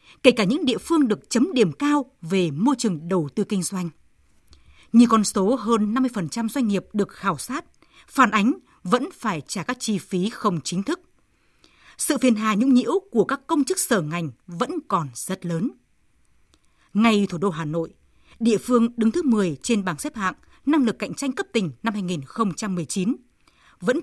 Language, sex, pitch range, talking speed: Vietnamese, female, 185-260 Hz, 185 wpm